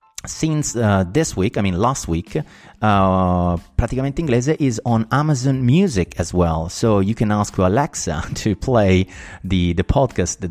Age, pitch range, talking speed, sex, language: 30-49, 90-105 Hz, 155 wpm, male, Italian